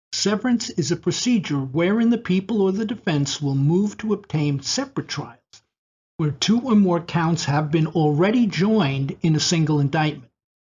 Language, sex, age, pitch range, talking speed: English, male, 50-69, 145-195 Hz, 165 wpm